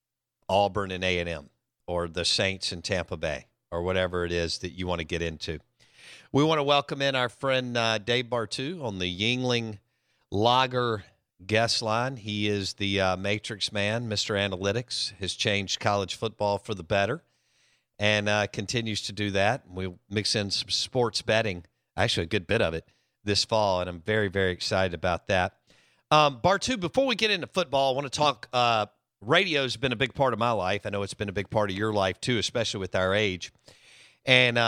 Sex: male